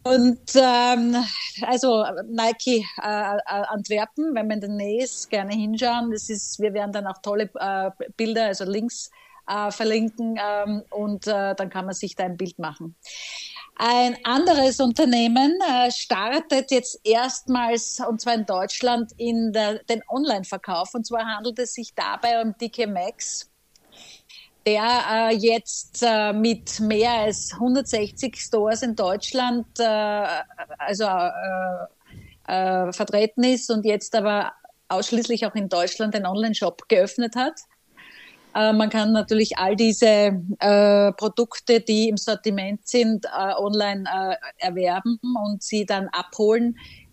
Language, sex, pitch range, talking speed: German, female, 205-240 Hz, 135 wpm